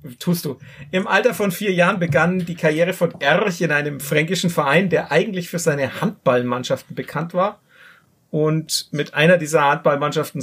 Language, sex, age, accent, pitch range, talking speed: German, male, 40-59, German, 155-195 Hz, 160 wpm